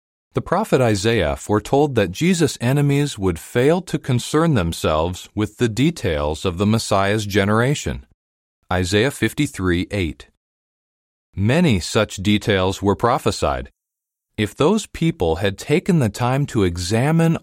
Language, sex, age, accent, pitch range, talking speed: English, male, 40-59, American, 90-140 Hz, 125 wpm